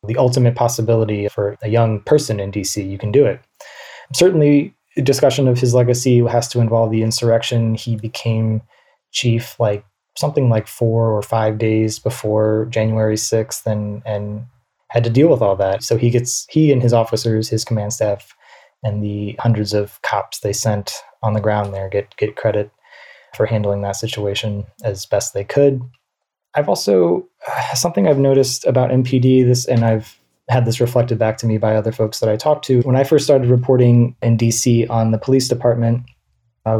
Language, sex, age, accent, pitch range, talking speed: English, male, 20-39, American, 110-125 Hz, 180 wpm